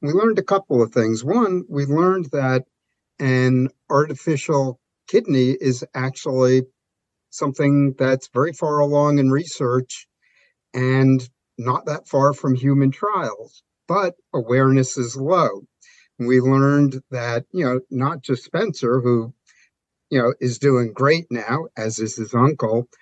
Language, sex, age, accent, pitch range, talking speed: English, male, 50-69, American, 125-140 Hz, 135 wpm